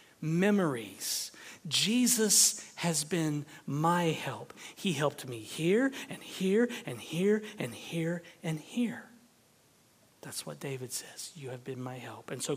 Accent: American